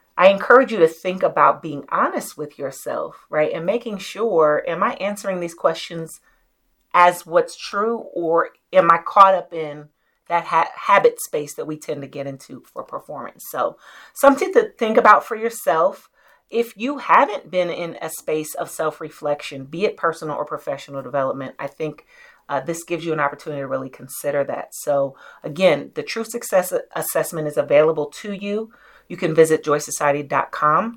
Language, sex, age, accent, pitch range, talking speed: English, female, 40-59, American, 145-200 Hz, 170 wpm